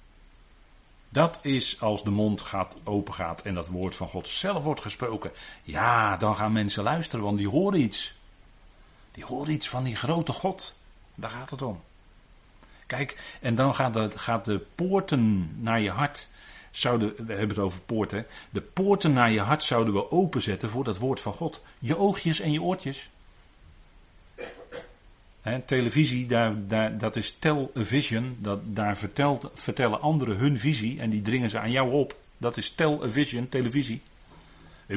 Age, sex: 40-59, male